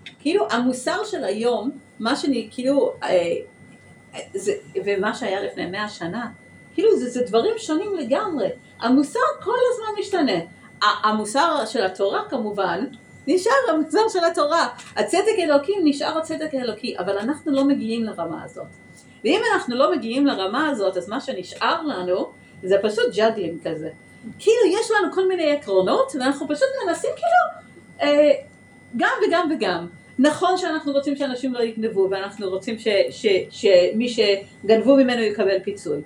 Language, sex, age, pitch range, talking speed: Hebrew, female, 40-59, 210-335 Hz, 135 wpm